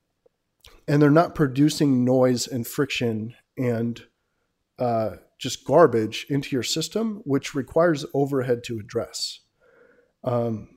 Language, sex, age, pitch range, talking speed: English, male, 40-59, 125-155 Hz, 110 wpm